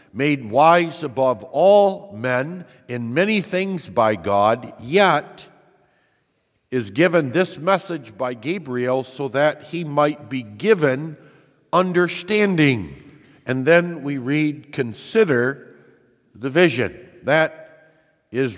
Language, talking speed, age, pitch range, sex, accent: English, 105 wpm, 50-69, 120-155 Hz, male, American